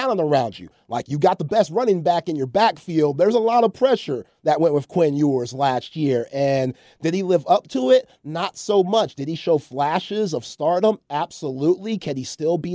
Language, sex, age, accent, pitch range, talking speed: English, male, 30-49, American, 140-170 Hz, 210 wpm